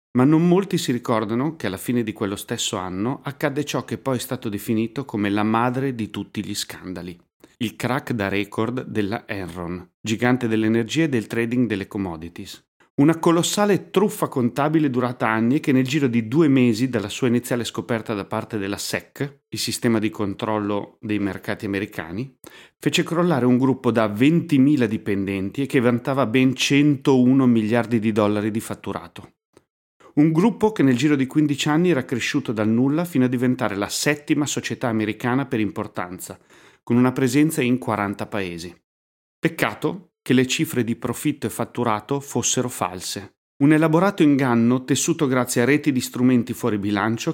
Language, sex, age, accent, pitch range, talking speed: Italian, male, 30-49, native, 105-140 Hz, 165 wpm